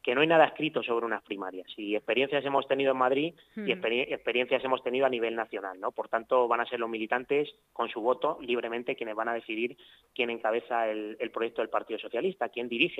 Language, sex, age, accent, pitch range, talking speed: Spanish, male, 20-39, Spanish, 110-130 Hz, 210 wpm